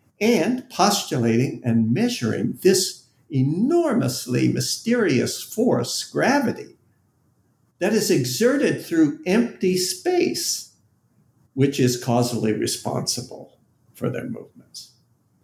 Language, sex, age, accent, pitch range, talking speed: English, male, 60-79, American, 115-155 Hz, 85 wpm